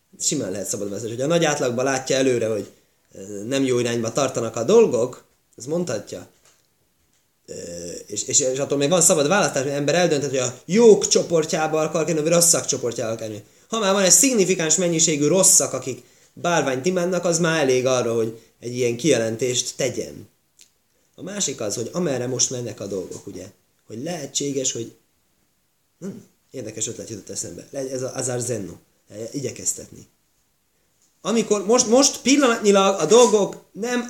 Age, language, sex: 20-39, Hungarian, male